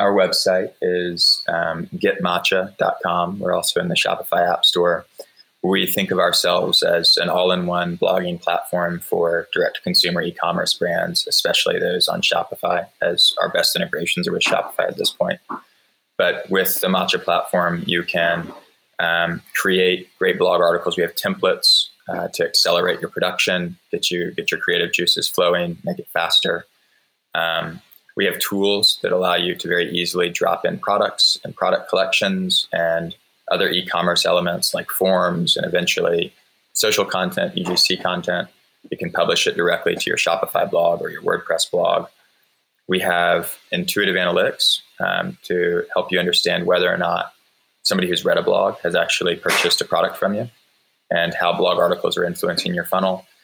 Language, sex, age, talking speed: English, male, 20-39, 160 wpm